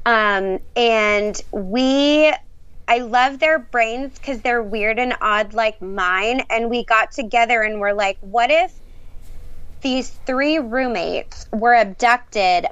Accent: American